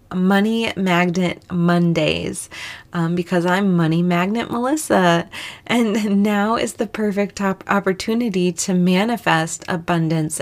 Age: 20-39